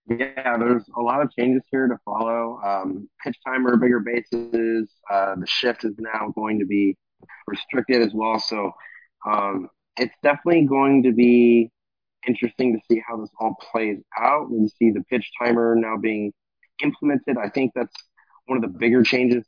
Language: English